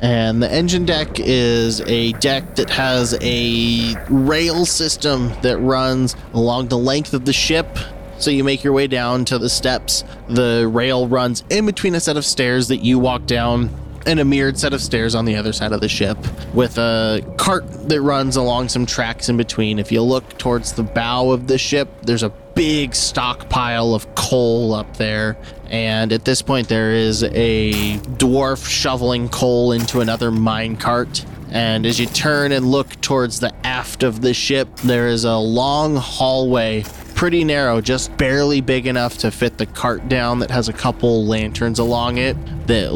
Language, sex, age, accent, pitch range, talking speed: English, male, 20-39, American, 115-130 Hz, 185 wpm